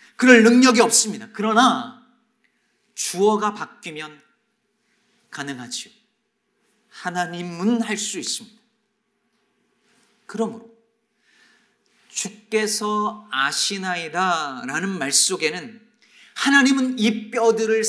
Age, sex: 40-59, male